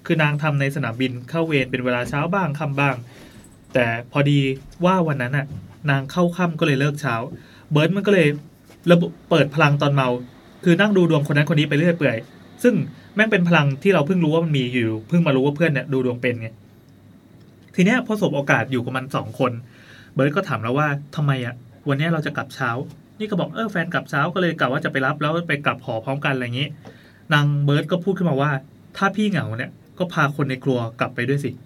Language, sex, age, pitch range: English, male, 20-39, 130-160 Hz